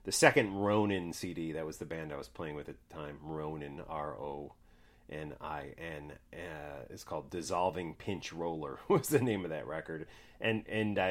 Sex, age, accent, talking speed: male, 30-49, American, 190 wpm